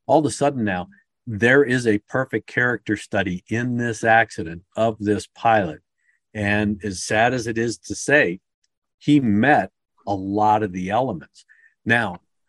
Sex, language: male, English